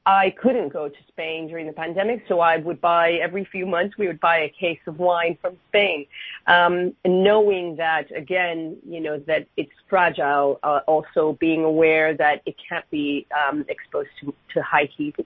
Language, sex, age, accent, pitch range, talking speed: English, female, 40-59, American, 155-180 Hz, 185 wpm